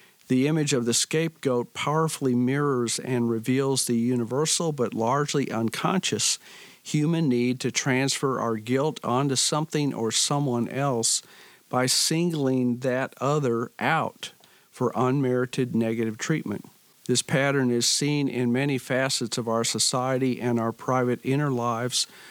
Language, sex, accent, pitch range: English, male, American, 120-140 Hz